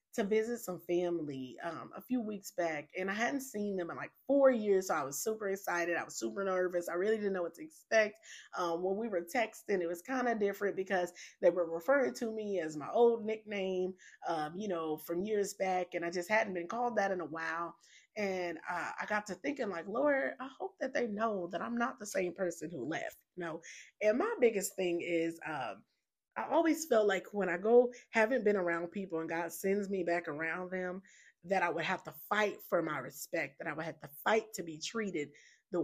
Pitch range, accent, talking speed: 175-225 Hz, American, 230 wpm